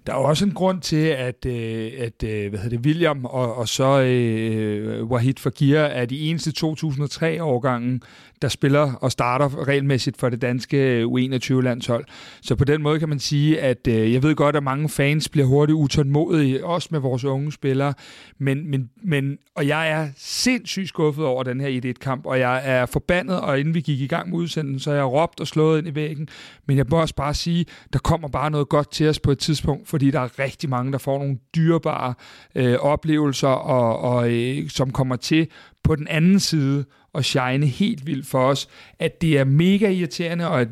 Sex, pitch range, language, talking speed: male, 130-155 Hz, Danish, 205 wpm